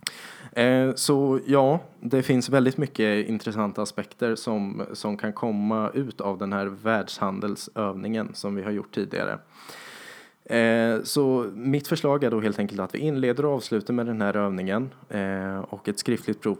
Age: 20-39